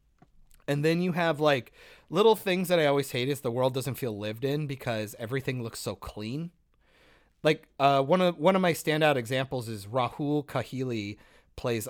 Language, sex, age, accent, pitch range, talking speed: English, male, 30-49, American, 115-160 Hz, 180 wpm